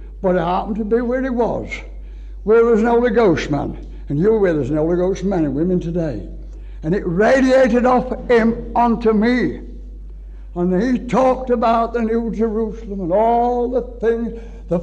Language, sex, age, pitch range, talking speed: English, male, 60-79, 175-265 Hz, 185 wpm